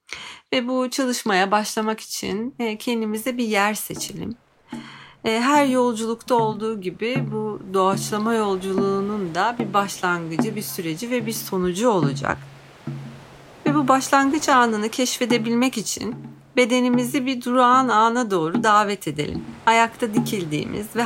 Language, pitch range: Turkish, 185-245 Hz